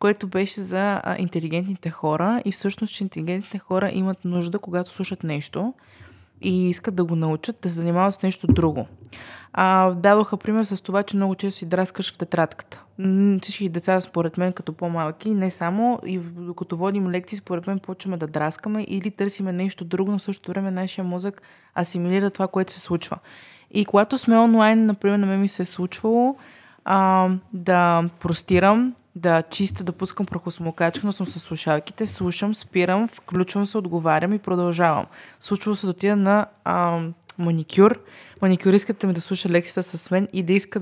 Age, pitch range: 20-39, 175-200 Hz